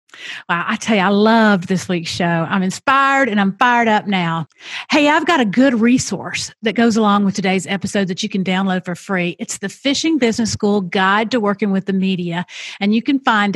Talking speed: 215 wpm